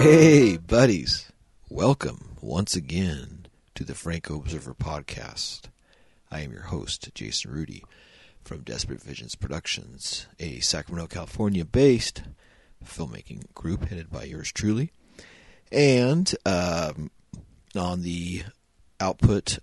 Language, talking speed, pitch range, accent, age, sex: English, 105 wpm, 80-95 Hz, American, 40-59, male